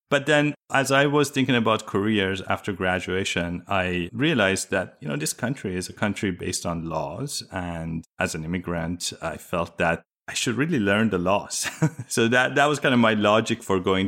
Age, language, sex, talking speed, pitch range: 30-49, English, male, 195 wpm, 95-125 Hz